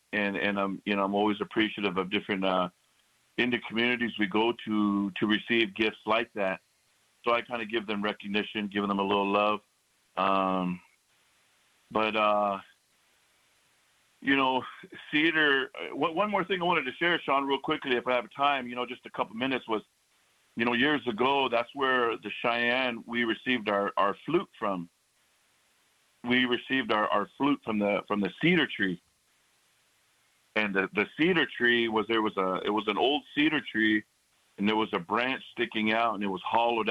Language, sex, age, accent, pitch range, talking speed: English, male, 50-69, American, 100-120 Hz, 180 wpm